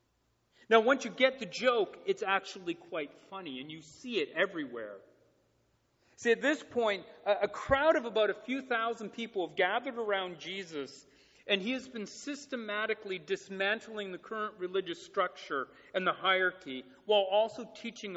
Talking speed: 155 wpm